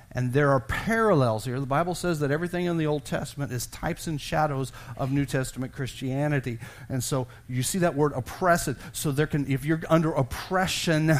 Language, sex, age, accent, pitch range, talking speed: English, male, 40-59, American, 135-195 Hz, 195 wpm